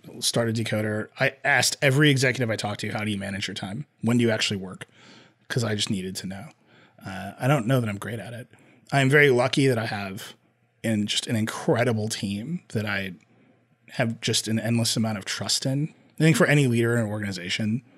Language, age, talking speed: English, 30-49, 220 wpm